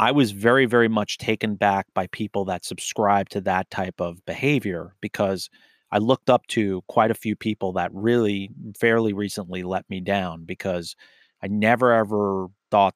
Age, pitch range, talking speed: 30-49, 95-115 Hz, 170 wpm